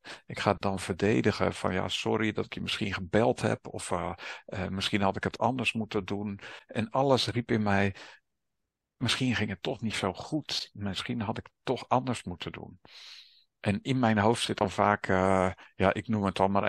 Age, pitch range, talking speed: 50-69, 95-110 Hz, 210 wpm